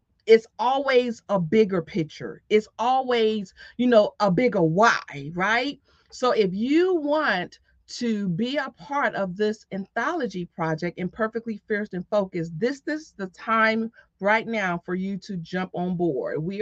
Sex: female